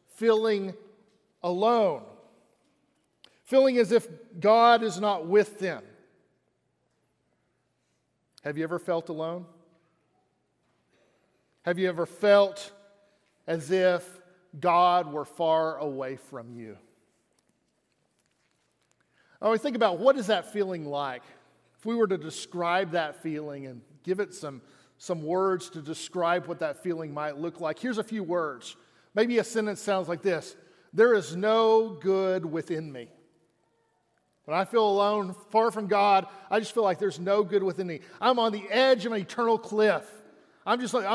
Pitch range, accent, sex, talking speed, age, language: 165-220 Hz, American, male, 145 wpm, 40-59, English